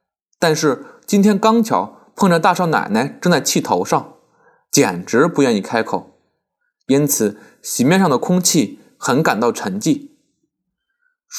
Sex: male